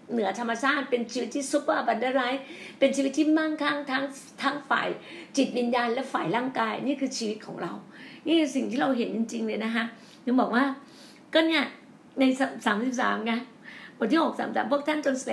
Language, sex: Thai, female